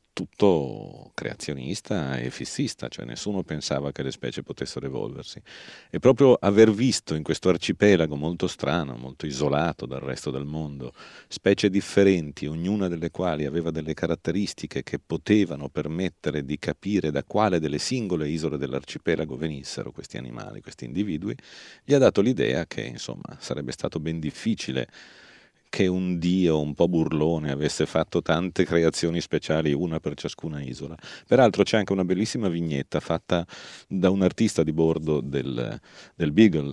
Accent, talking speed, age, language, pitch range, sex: native, 150 wpm, 40-59, Italian, 70-90 Hz, male